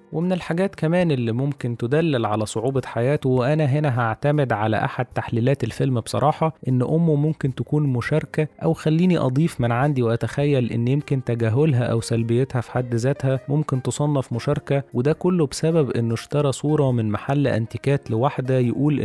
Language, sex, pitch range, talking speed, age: Arabic, male, 115-140 Hz, 160 wpm, 20-39